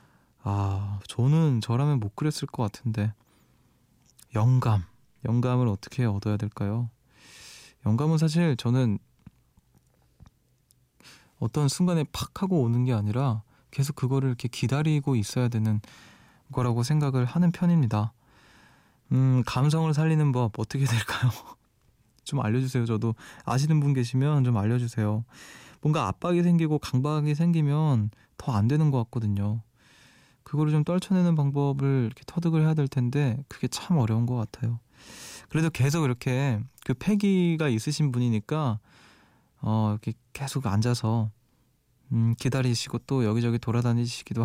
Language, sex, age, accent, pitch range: Korean, male, 20-39, native, 115-145 Hz